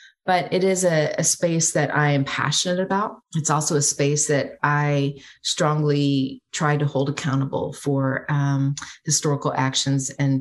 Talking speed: 155 wpm